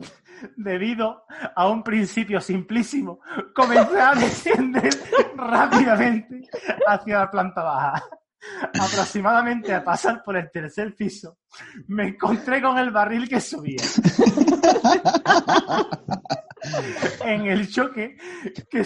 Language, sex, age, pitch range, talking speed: Spanish, male, 30-49, 185-235 Hz, 100 wpm